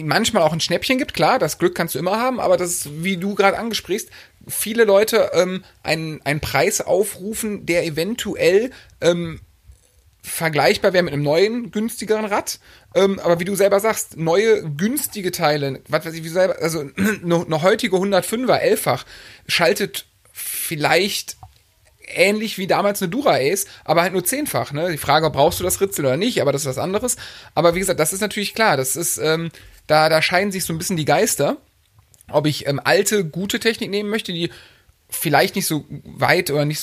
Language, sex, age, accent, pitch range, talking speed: German, male, 30-49, German, 140-195 Hz, 190 wpm